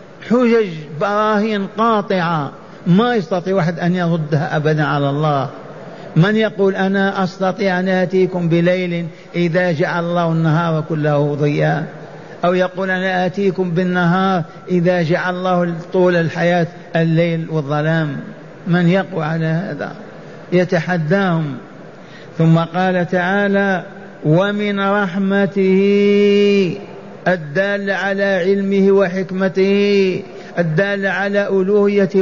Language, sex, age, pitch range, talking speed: Arabic, male, 50-69, 175-200 Hz, 100 wpm